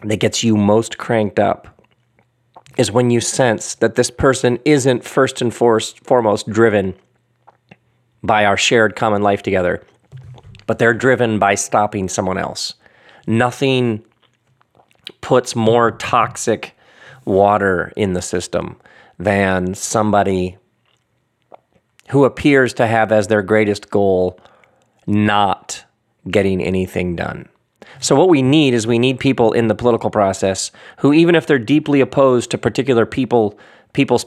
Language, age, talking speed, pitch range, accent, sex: English, 40-59, 130 wpm, 105-120 Hz, American, male